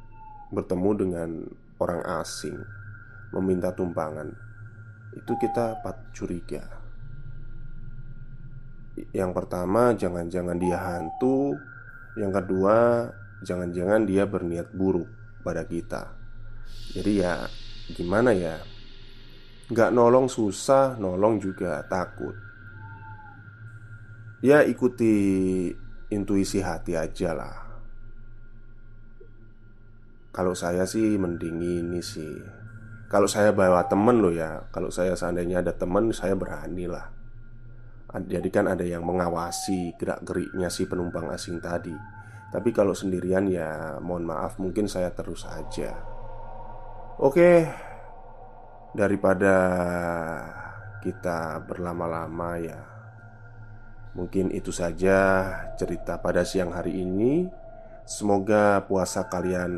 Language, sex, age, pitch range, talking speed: Indonesian, male, 20-39, 90-110 Hz, 95 wpm